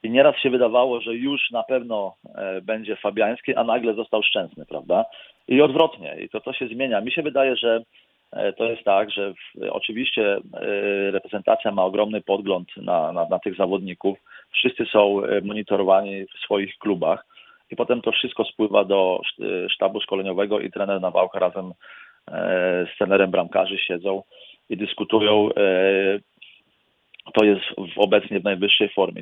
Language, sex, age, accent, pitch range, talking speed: Polish, male, 40-59, native, 95-115 Hz, 150 wpm